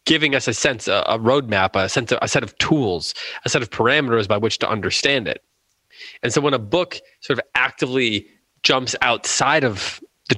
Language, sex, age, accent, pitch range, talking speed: English, male, 20-39, American, 105-135 Hz, 195 wpm